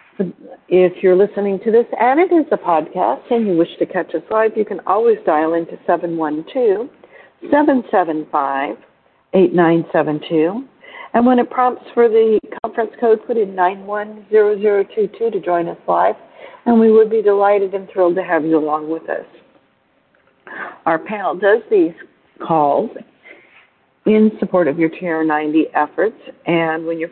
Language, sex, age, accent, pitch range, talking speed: English, female, 60-79, American, 165-220 Hz, 150 wpm